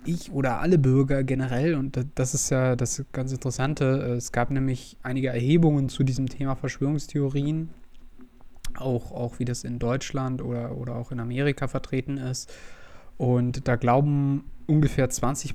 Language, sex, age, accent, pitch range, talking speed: German, male, 20-39, German, 125-140 Hz, 150 wpm